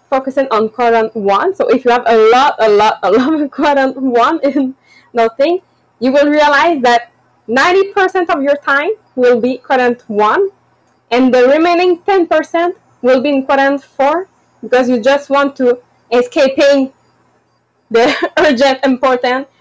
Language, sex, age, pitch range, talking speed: English, female, 20-39, 225-285 Hz, 150 wpm